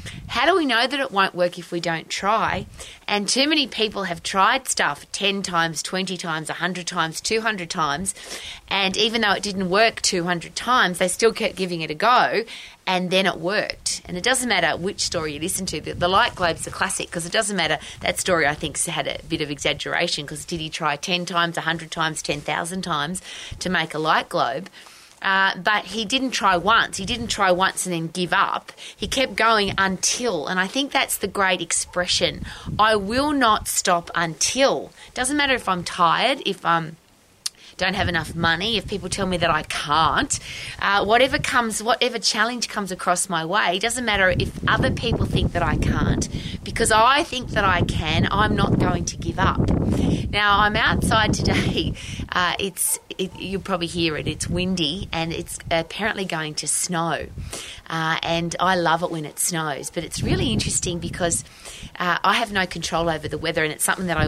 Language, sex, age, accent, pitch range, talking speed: English, female, 30-49, Australian, 165-210 Hz, 200 wpm